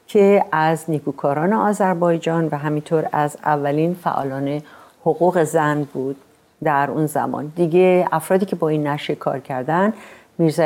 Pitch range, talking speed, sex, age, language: 140-175 Hz, 135 wpm, female, 50-69, Persian